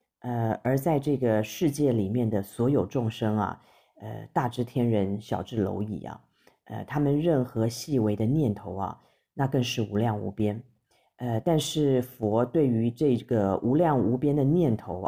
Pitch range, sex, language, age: 110-140 Hz, female, Chinese, 40-59